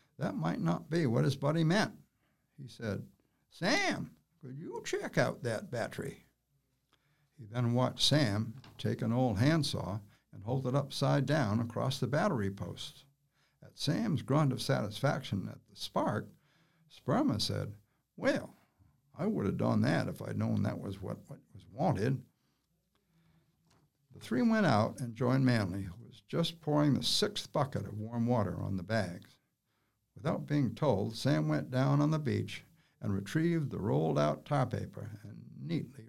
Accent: American